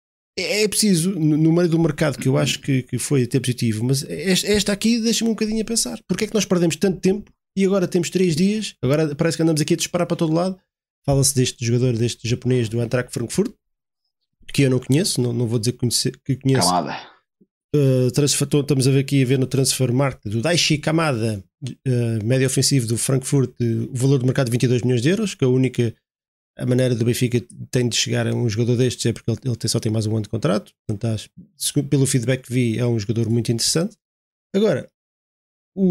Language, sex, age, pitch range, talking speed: Portuguese, male, 20-39, 125-180 Hz, 215 wpm